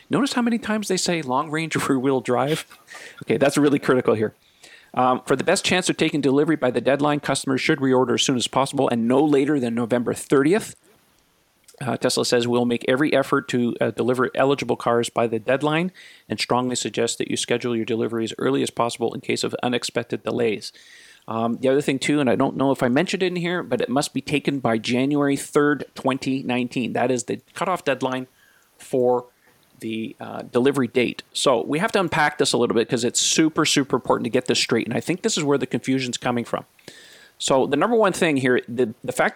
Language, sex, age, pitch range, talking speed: English, male, 40-59, 125-160 Hz, 215 wpm